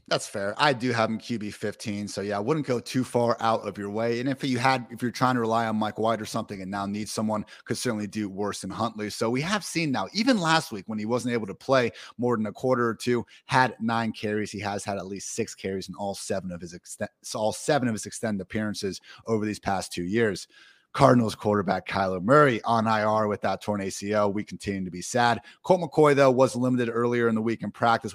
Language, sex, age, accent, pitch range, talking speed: English, male, 30-49, American, 105-125 Hz, 245 wpm